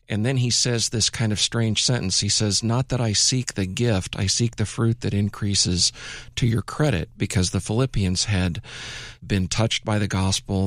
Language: English